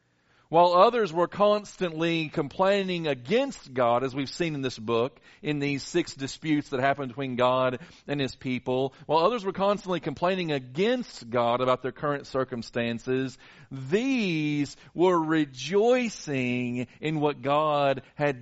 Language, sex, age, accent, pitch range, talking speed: English, male, 40-59, American, 125-175 Hz, 135 wpm